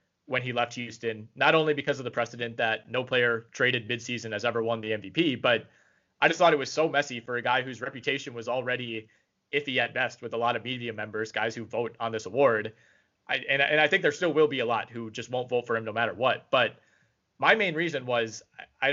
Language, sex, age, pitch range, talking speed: English, male, 20-39, 115-140 Hz, 245 wpm